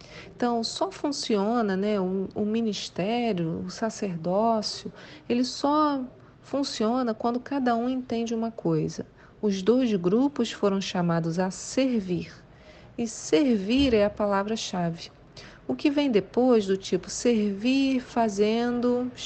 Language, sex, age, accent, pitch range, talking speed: Portuguese, female, 40-59, Brazilian, 195-250 Hz, 120 wpm